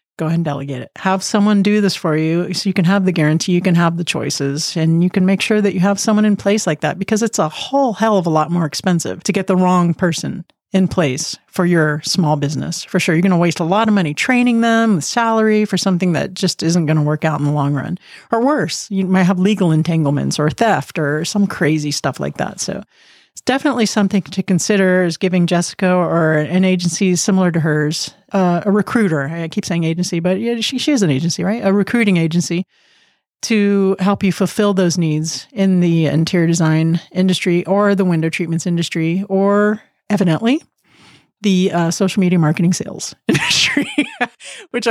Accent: American